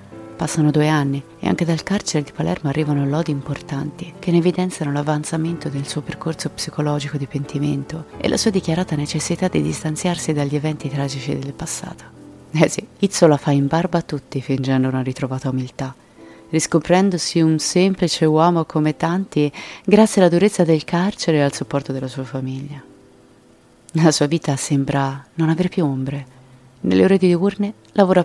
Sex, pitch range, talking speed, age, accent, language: female, 140-175 Hz, 165 wpm, 30-49, native, Italian